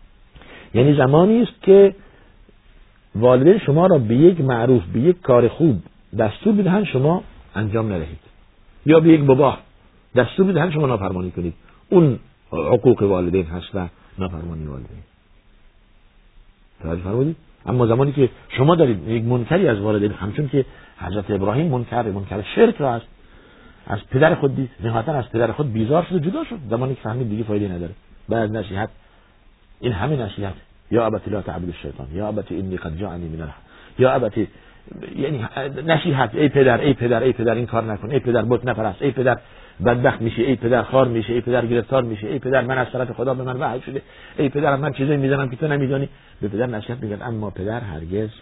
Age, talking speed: 50-69, 175 wpm